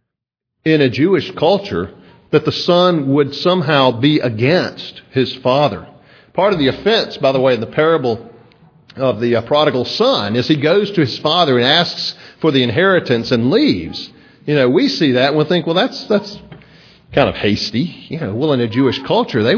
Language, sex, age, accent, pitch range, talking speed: English, male, 50-69, American, 115-150 Hz, 195 wpm